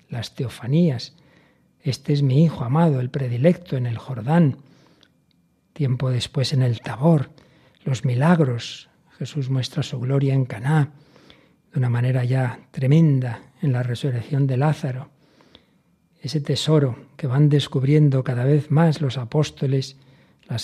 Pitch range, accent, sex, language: 130-150 Hz, Spanish, male, Spanish